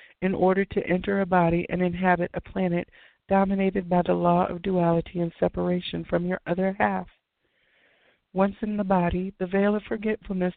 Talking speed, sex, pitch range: 170 wpm, female, 175-195 Hz